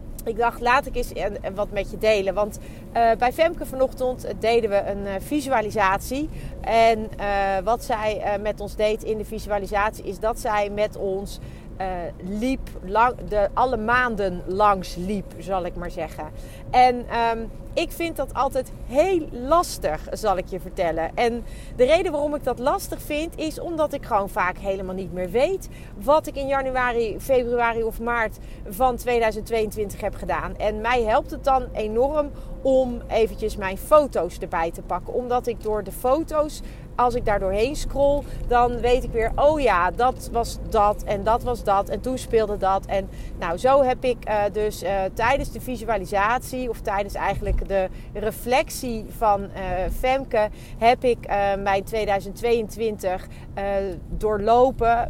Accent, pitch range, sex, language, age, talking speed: Dutch, 200-250 Hz, female, Dutch, 40-59, 160 wpm